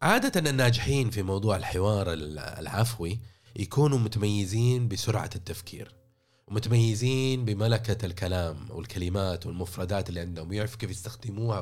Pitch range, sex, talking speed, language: 100-120 Hz, male, 110 wpm, Arabic